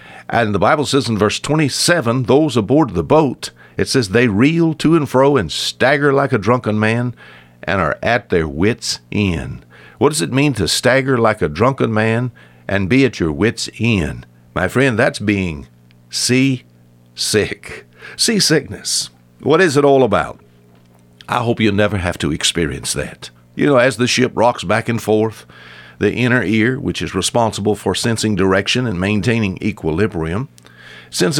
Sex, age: male, 60-79